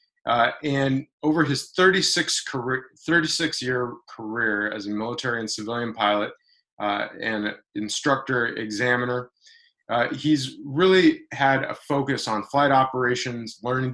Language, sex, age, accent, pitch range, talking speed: English, male, 20-39, American, 115-145 Hz, 115 wpm